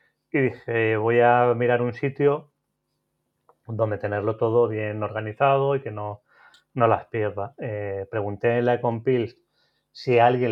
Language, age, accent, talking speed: Spanish, 30-49, Spanish, 150 wpm